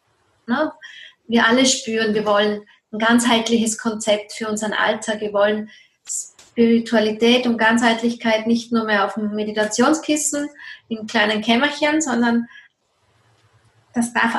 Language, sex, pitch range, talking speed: German, female, 225-280 Hz, 115 wpm